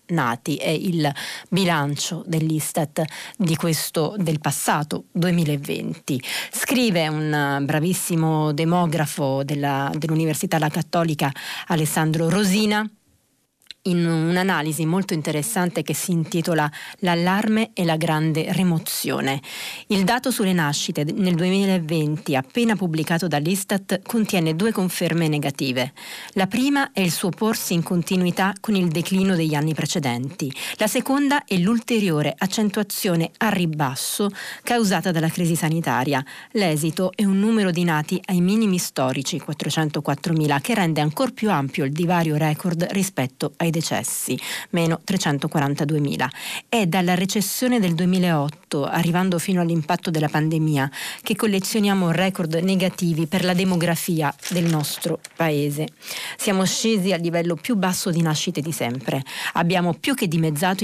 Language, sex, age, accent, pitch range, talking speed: Italian, female, 40-59, native, 155-190 Hz, 125 wpm